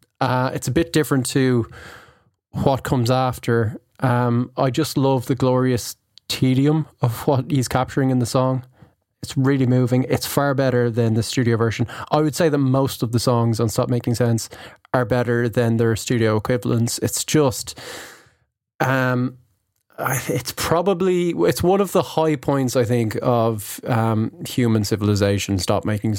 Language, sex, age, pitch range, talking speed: English, male, 20-39, 115-140 Hz, 160 wpm